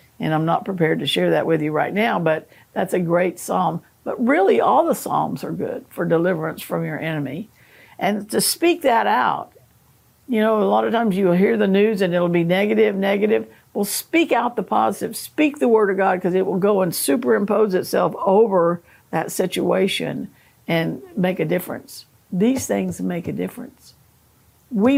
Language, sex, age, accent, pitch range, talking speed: English, female, 60-79, American, 170-220 Hz, 190 wpm